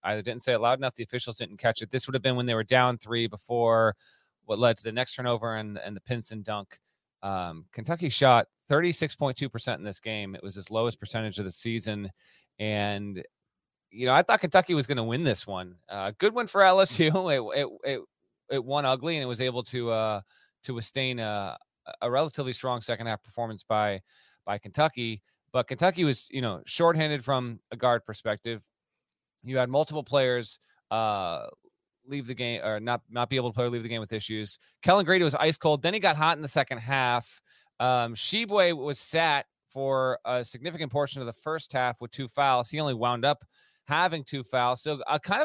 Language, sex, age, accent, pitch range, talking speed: English, male, 30-49, American, 110-140 Hz, 205 wpm